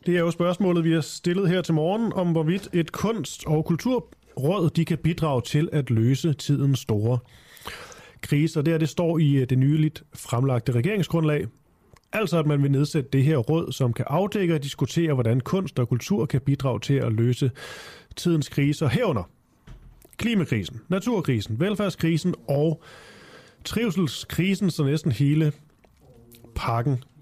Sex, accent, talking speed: male, native, 145 wpm